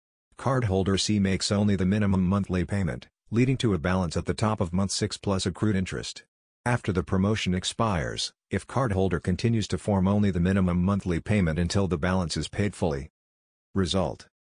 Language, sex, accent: English, male, American